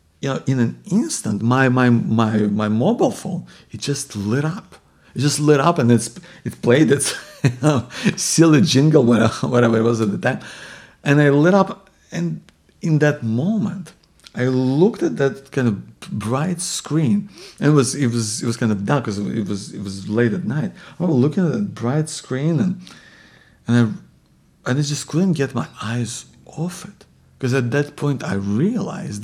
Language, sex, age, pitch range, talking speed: English, male, 50-69, 115-155 Hz, 190 wpm